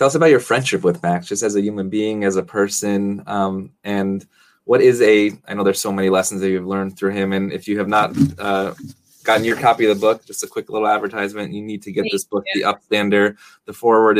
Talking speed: 245 wpm